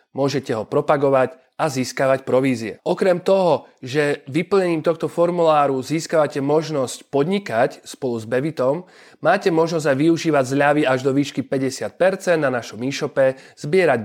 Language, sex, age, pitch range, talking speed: Slovak, male, 30-49, 130-160 Hz, 130 wpm